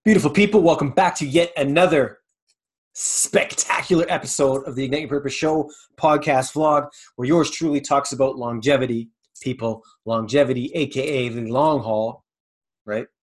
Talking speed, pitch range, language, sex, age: 135 wpm, 115-140 Hz, English, male, 30-49